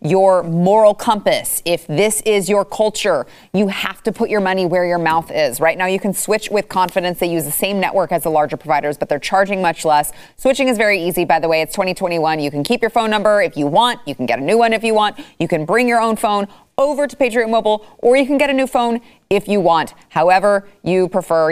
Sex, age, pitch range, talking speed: female, 30-49, 160-215 Hz, 250 wpm